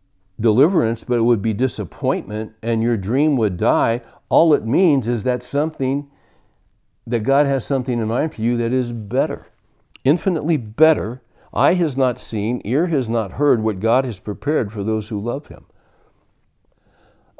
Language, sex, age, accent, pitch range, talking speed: English, male, 60-79, American, 100-120 Hz, 165 wpm